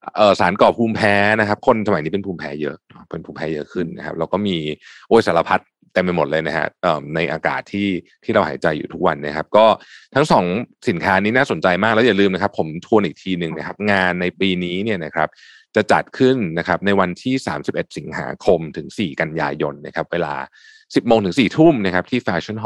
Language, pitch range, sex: Thai, 85-105 Hz, male